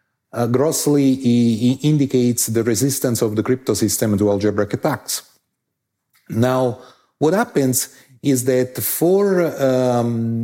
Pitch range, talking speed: 110-135 Hz, 120 wpm